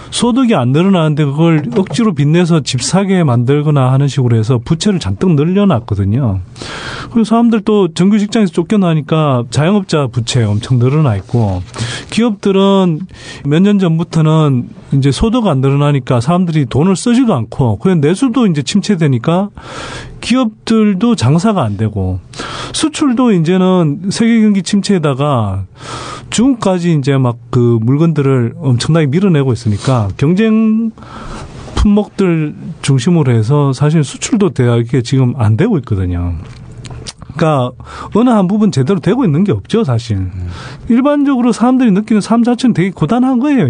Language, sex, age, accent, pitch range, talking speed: English, male, 30-49, Korean, 125-210 Hz, 115 wpm